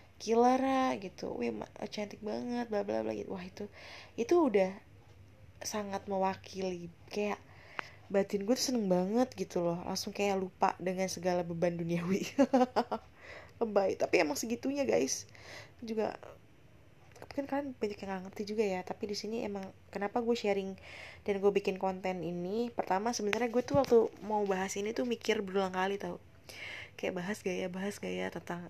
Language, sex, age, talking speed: Indonesian, female, 20-39, 155 wpm